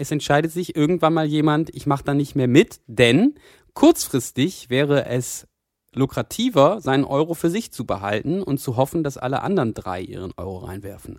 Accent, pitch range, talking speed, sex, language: German, 125-165 Hz, 175 wpm, male, German